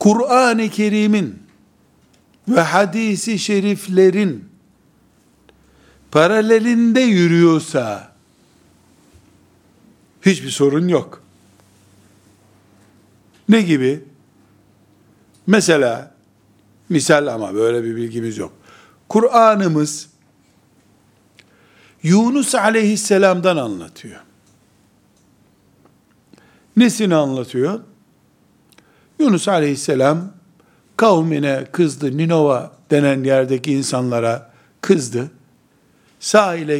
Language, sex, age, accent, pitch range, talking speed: Turkish, male, 60-79, native, 115-175 Hz, 55 wpm